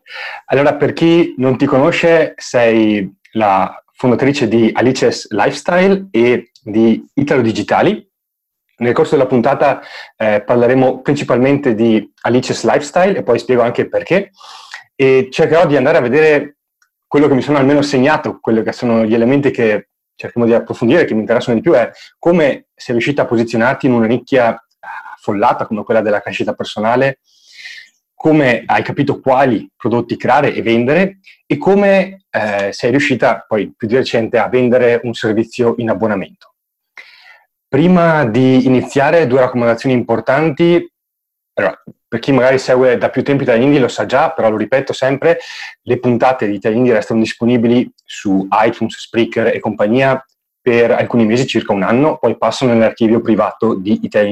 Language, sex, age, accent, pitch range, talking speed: Italian, male, 30-49, native, 115-140 Hz, 155 wpm